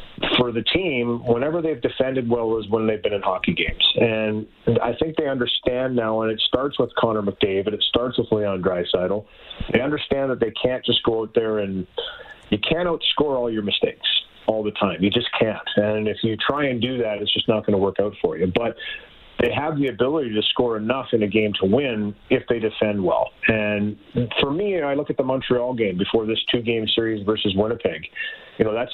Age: 40-59